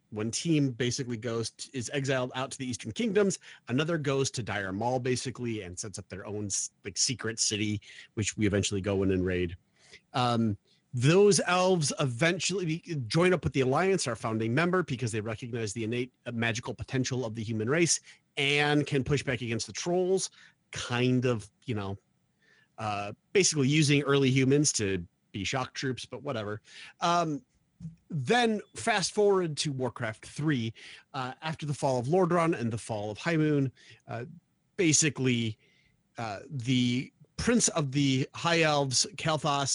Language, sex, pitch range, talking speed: English, male, 115-155 Hz, 160 wpm